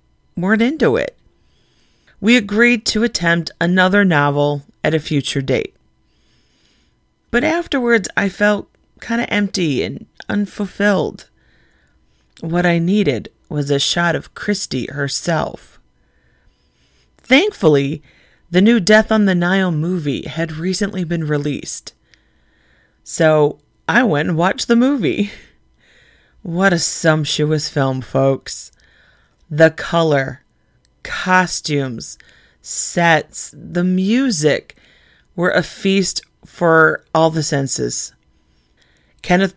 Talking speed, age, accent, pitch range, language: 105 wpm, 30-49, American, 140-185 Hz, English